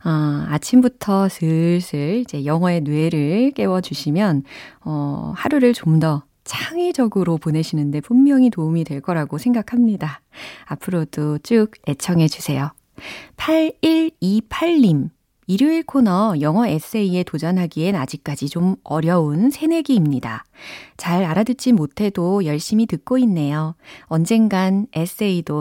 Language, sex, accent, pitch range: Korean, female, native, 155-230 Hz